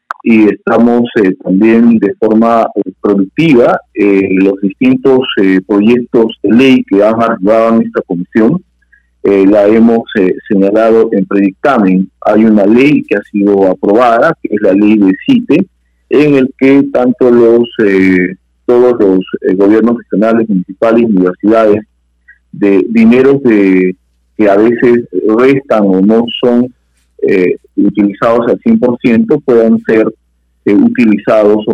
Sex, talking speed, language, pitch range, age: male, 140 wpm, Spanish, 100-120 Hz, 40-59